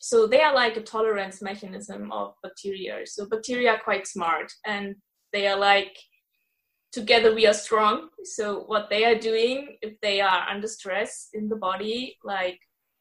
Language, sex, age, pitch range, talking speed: English, female, 20-39, 195-230 Hz, 165 wpm